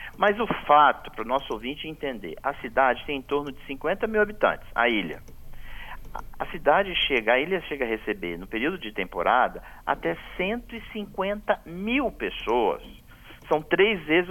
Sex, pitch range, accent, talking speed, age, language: male, 135-190 Hz, Brazilian, 160 wpm, 50-69, Portuguese